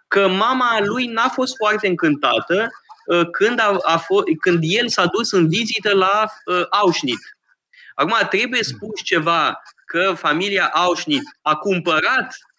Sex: male